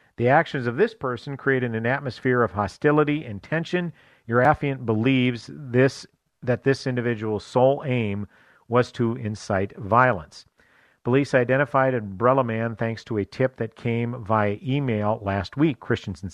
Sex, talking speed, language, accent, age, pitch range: male, 145 wpm, English, American, 50-69, 105-135 Hz